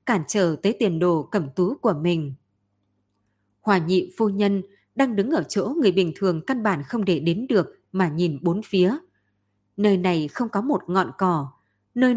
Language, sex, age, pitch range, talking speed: Vietnamese, female, 20-39, 170-220 Hz, 185 wpm